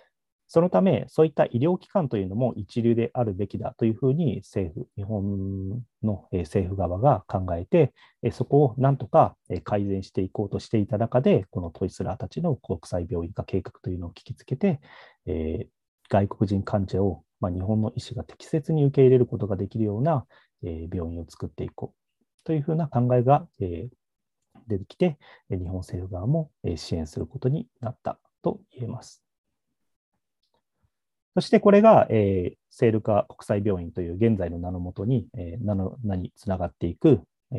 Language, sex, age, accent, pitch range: Japanese, male, 40-59, native, 95-130 Hz